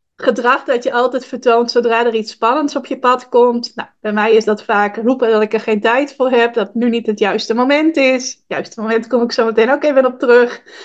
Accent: Dutch